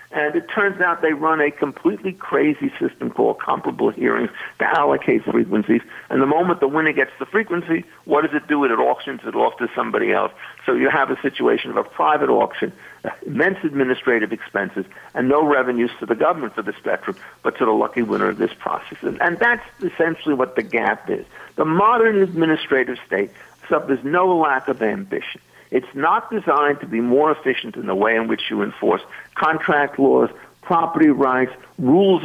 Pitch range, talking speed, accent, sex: 135-195 Hz, 185 wpm, American, male